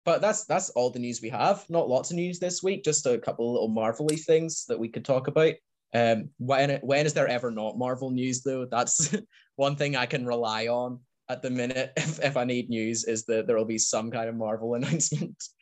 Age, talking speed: 10-29, 235 wpm